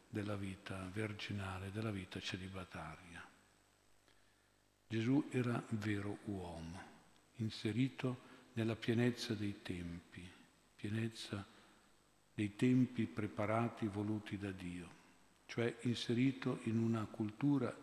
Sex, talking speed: male, 90 wpm